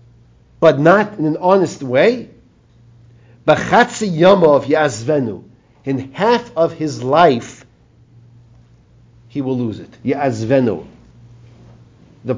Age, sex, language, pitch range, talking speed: 50-69, male, English, 120-165 Hz, 80 wpm